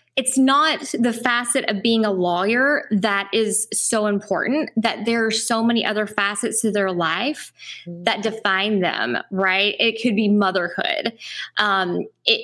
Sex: female